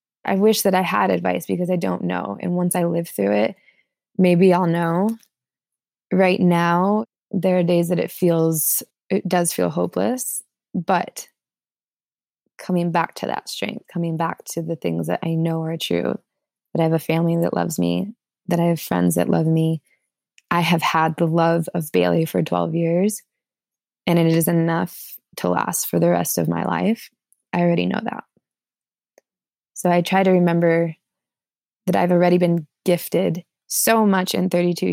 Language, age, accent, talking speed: English, 20-39, American, 175 wpm